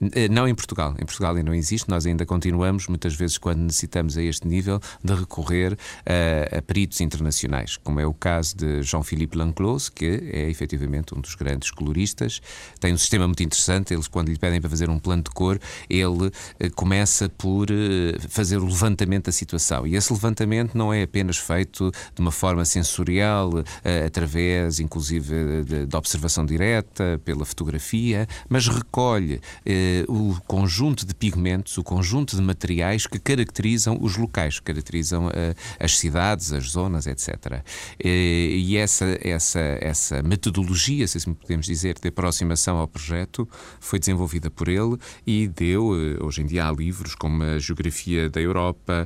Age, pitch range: 30-49, 80-100 Hz